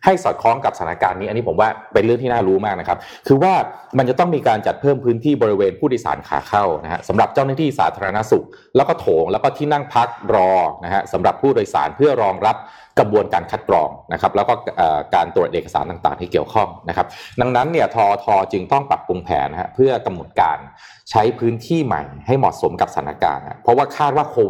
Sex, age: male, 30-49